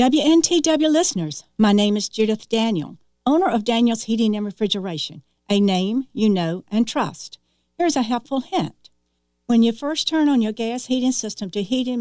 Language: English